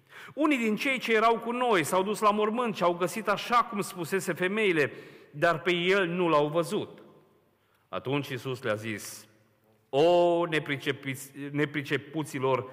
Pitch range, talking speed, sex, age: 135-190 Hz, 140 wpm, male, 40-59